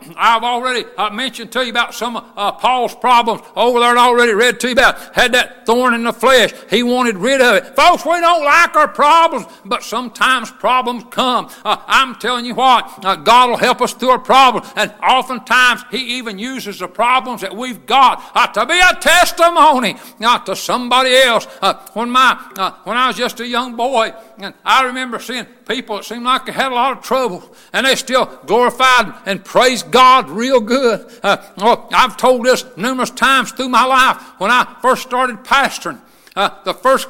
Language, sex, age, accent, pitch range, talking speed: English, male, 60-79, American, 230-255 Hz, 200 wpm